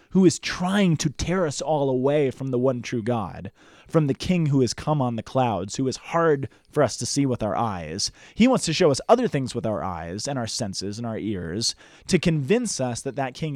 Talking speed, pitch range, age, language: 240 wpm, 115-160 Hz, 30-49, English